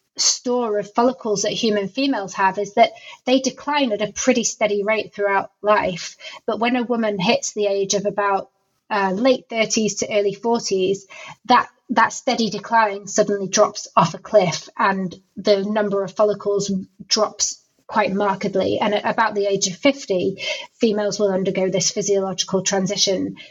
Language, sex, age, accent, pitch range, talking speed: English, female, 30-49, British, 195-225 Hz, 160 wpm